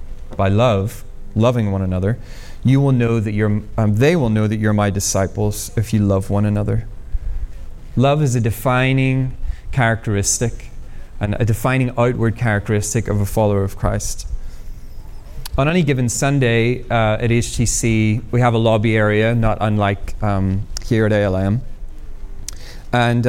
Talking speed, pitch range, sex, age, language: 145 wpm, 105-125 Hz, male, 30-49, English